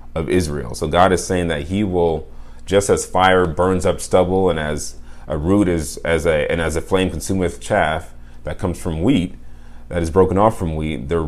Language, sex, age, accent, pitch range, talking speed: English, male, 30-49, American, 75-90 Hz, 205 wpm